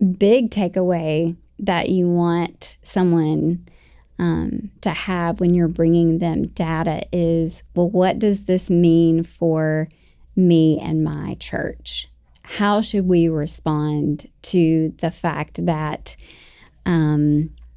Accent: American